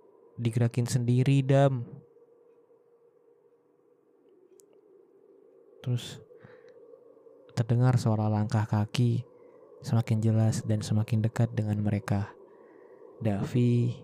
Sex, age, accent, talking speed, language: male, 20-39, native, 70 wpm, Indonesian